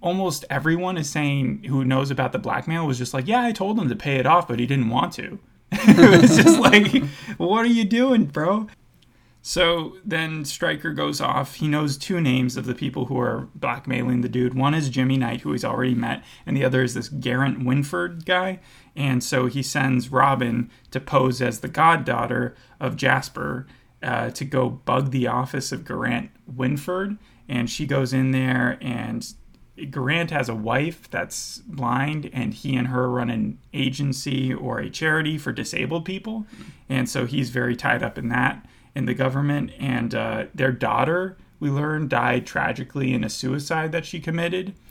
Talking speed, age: 185 wpm, 30-49